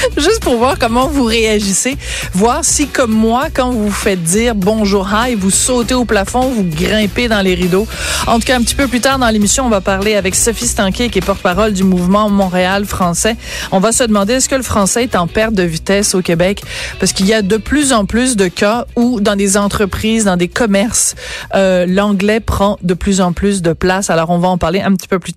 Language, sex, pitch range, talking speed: French, female, 190-235 Hz, 235 wpm